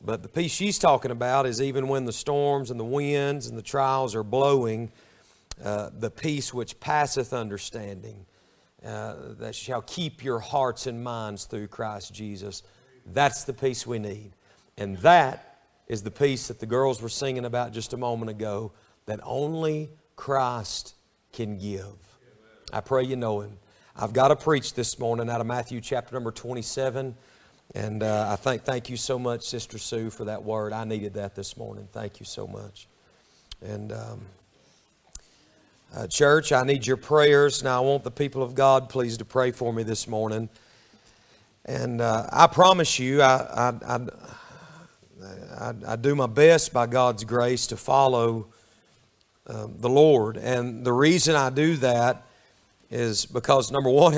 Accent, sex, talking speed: American, male, 170 wpm